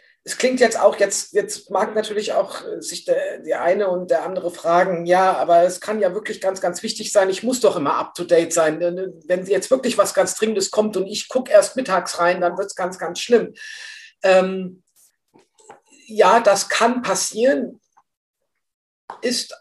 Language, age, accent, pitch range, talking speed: German, 50-69, German, 170-215 Hz, 185 wpm